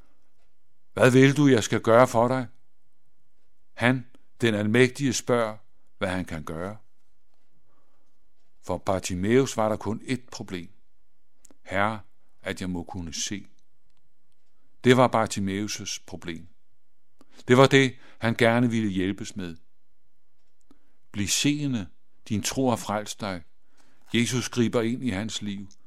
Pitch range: 100-125 Hz